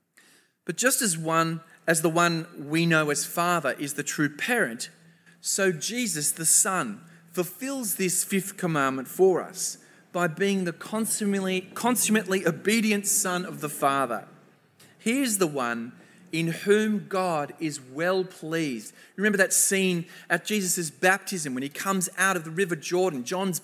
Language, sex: English, male